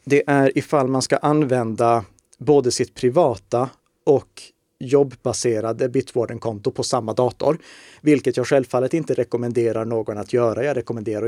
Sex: male